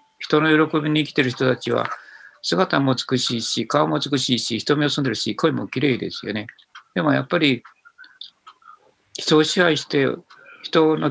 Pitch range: 120-150 Hz